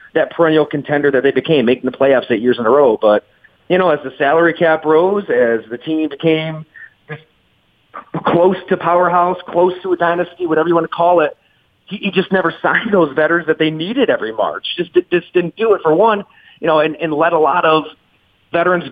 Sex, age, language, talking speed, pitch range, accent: male, 30-49, English, 215 wpm, 140-175 Hz, American